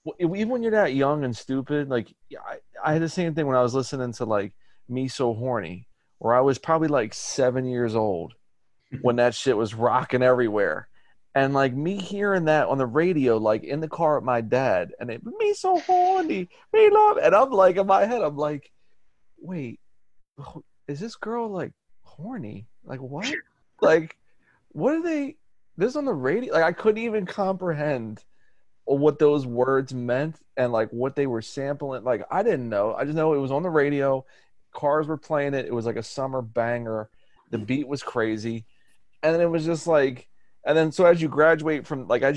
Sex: male